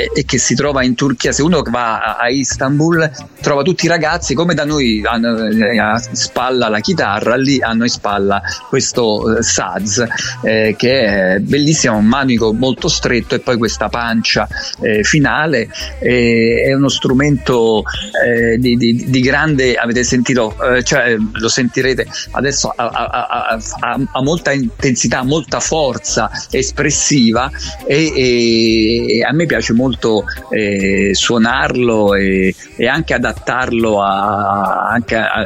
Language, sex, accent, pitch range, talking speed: Italian, male, native, 105-130 Hz, 145 wpm